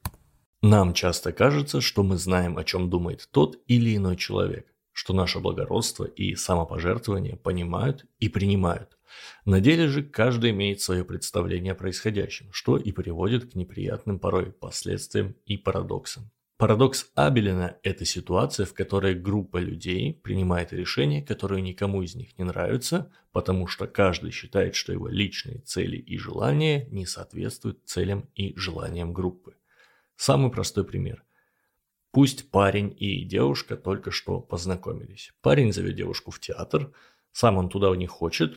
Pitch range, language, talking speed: 90-120 Hz, Russian, 140 wpm